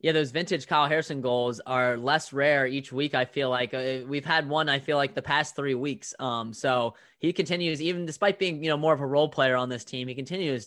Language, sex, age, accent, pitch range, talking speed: English, male, 20-39, American, 120-145 Hz, 240 wpm